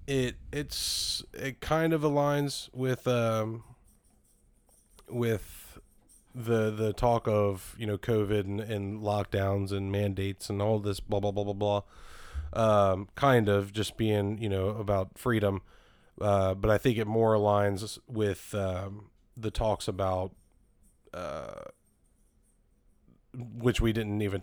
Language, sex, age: English, male, 20-39